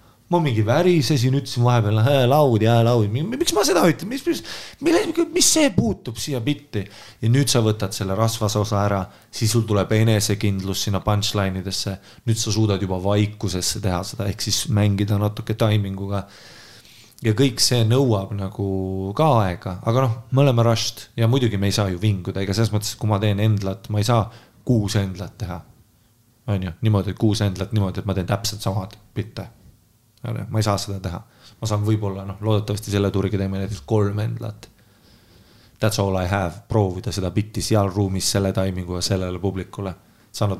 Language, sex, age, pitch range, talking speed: English, male, 30-49, 100-115 Hz, 180 wpm